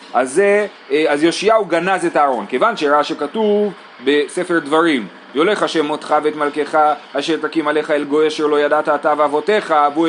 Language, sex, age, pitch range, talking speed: Hebrew, male, 30-49, 150-205 Hz, 160 wpm